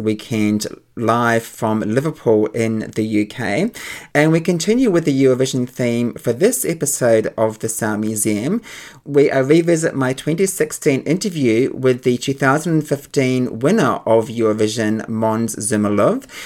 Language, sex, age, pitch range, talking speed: English, male, 30-49, 120-160 Hz, 125 wpm